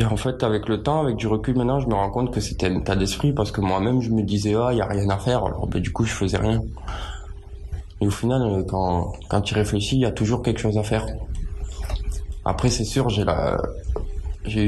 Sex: male